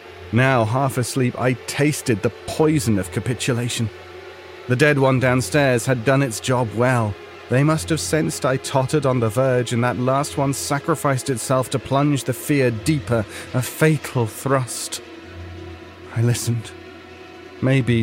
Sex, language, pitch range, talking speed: male, English, 120-155 Hz, 145 wpm